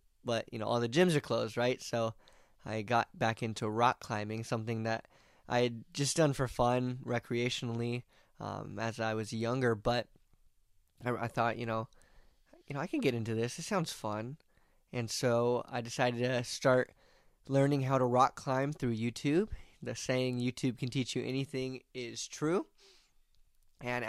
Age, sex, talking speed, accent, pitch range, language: 10-29, male, 170 wpm, American, 115-130 Hz, English